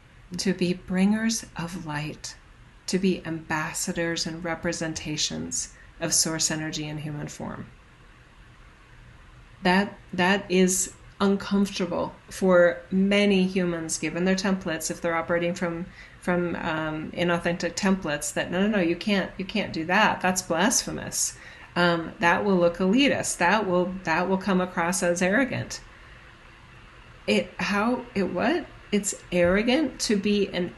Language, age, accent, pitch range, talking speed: English, 40-59, American, 170-200 Hz, 135 wpm